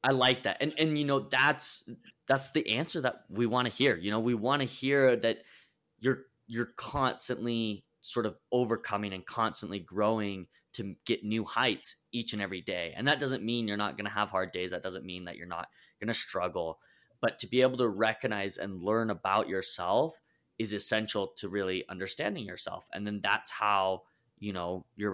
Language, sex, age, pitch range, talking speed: English, male, 20-39, 95-120 Hz, 200 wpm